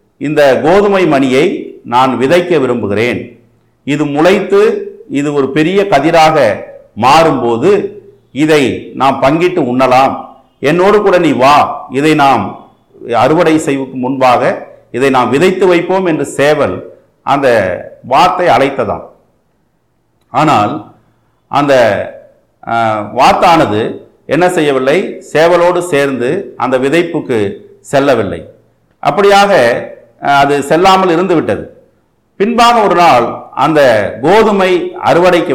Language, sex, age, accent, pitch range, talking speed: Tamil, male, 50-69, native, 130-200 Hz, 95 wpm